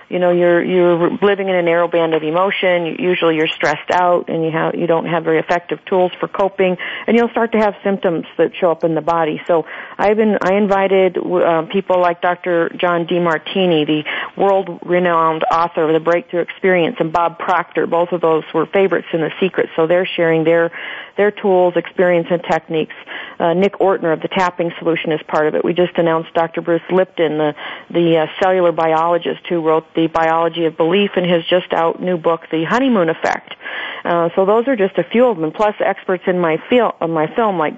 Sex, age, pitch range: female, 40-59, 165-180 Hz